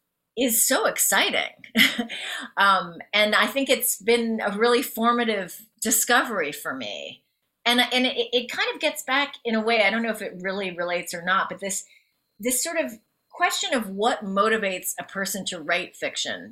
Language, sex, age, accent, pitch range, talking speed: English, female, 30-49, American, 185-240 Hz, 180 wpm